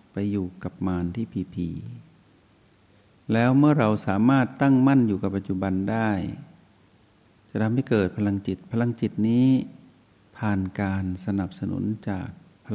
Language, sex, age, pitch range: Thai, male, 60-79, 95-115 Hz